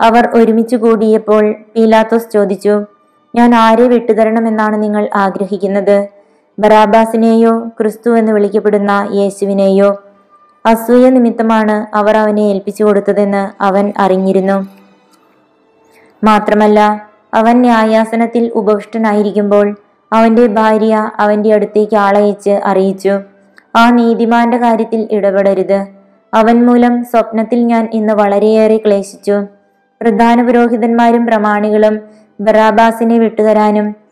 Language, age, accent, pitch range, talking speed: Malayalam, 20-39, native, 205-230 Hz, 85 wpm